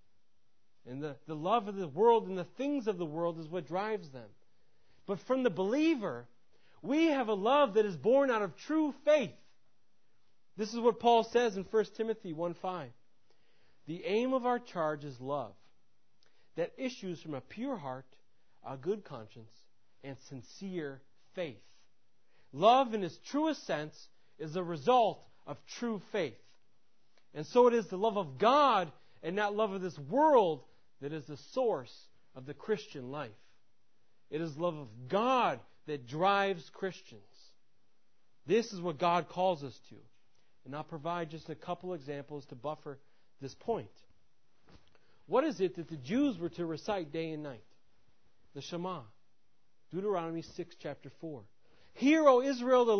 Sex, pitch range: male, 140-225 Hz